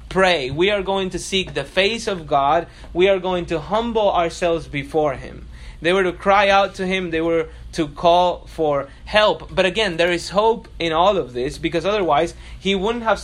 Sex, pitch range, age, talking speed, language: male, 170-210 Hz, 30-49, 205 wpm, English